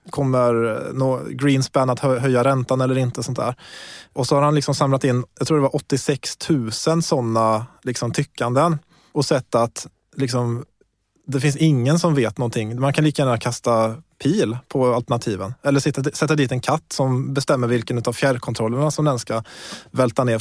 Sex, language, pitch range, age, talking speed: male, Swedish, 125-155 Hz, 20-39, 175 wpm